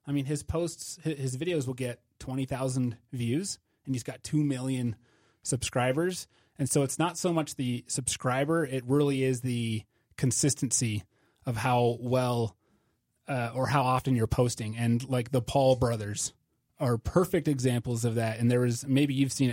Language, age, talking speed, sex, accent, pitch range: English, 30-49, 165 wpm, male, American, 120-140 Hz